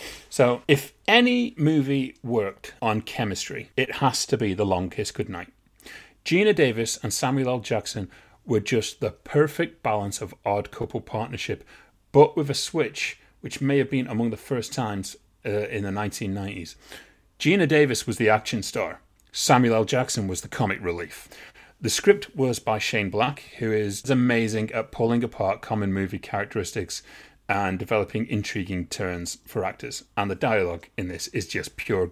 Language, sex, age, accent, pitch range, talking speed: English, male, 30-49, British, 105-130 Hz, 165 wpm